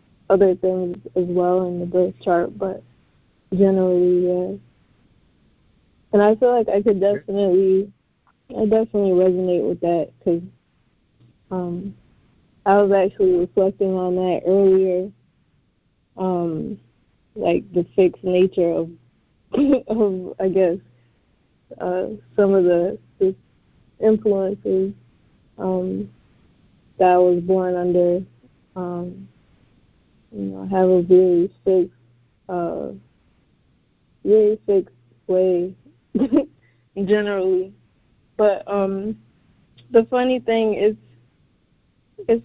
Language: English